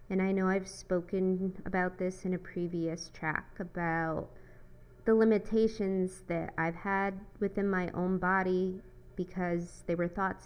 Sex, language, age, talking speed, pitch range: female, English, 20-39, 145 wpm, 155-190 Hz